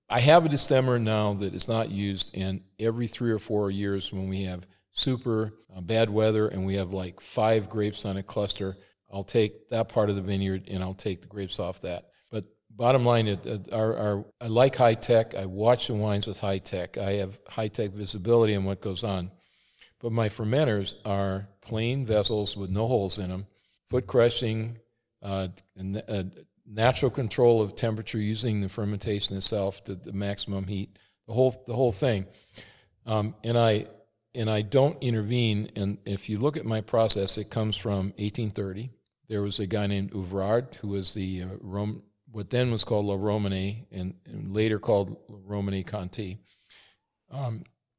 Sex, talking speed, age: male, 180 wpm, 50-69